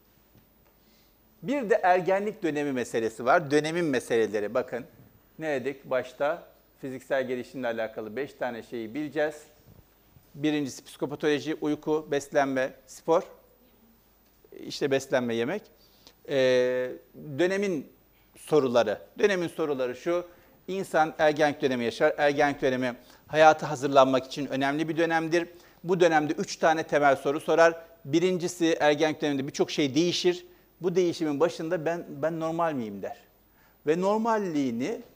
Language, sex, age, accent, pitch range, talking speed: Turkish, male, 50-69, native, 135-170 Hz, 115 wpm